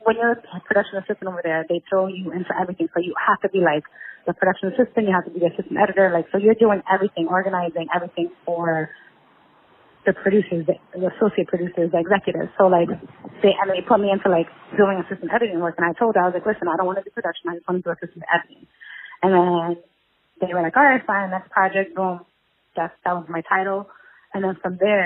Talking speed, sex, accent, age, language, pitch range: 230 wpm, female, American, 30-49, English, 170-205 Hz